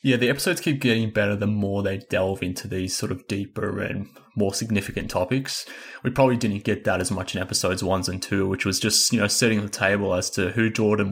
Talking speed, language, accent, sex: 230 wpm, English, Australian, male